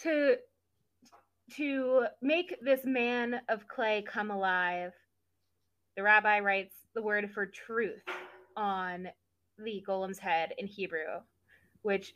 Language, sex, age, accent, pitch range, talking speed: English, female, 20-39, American, 195-265 Hz, 115 wpm